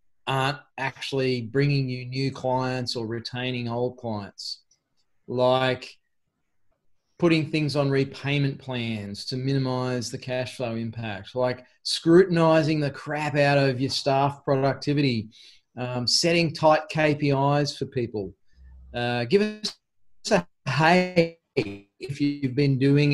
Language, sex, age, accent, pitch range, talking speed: English, male, 20-39, Australian, 125-145 Hz, 120 wpm